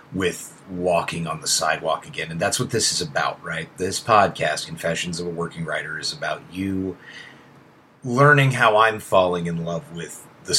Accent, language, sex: American, English, male